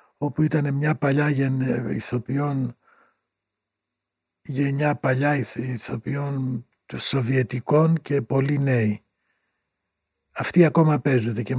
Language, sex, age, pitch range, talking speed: Greek, male, 60-79, 115-140 Hz, 95 wpm